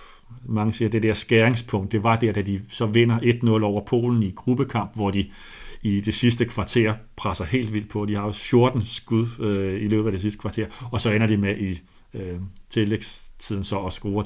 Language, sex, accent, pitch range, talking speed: Danish, male, native, 100-115 Hz, 215 wpm